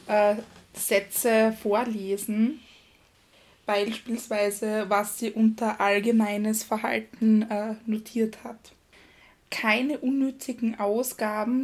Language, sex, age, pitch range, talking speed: German, female, 20-39, 205-230 Hz, 65 wpm